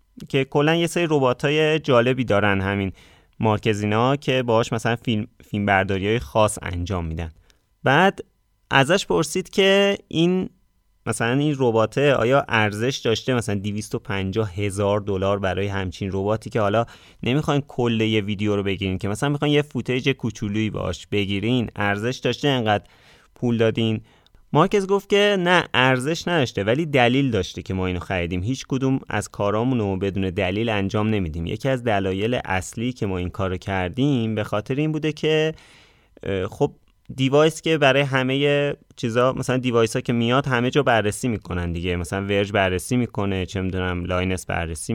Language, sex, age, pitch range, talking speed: Persian, male, 30-49, 100-135 Hz, 160 wpm